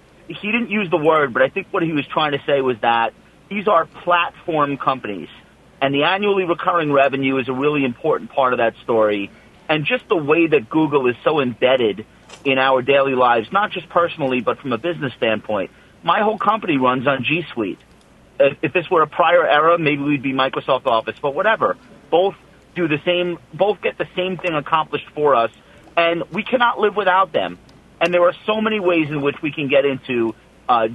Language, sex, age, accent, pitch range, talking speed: English, male, 40-59, American, 130-180 Hz, 205 wpm